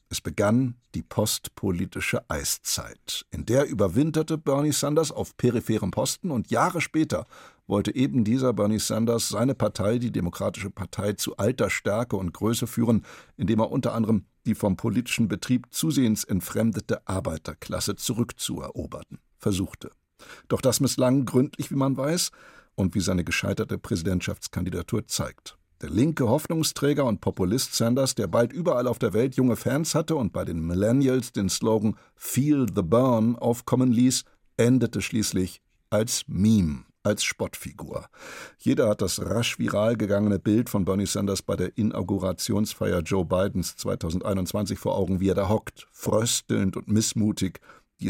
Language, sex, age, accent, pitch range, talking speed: German, male, 60-79, German, 100-125 Hz, 145 wpm